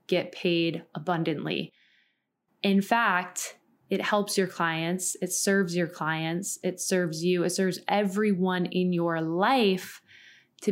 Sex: female